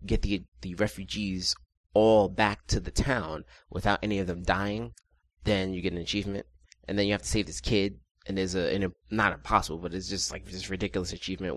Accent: American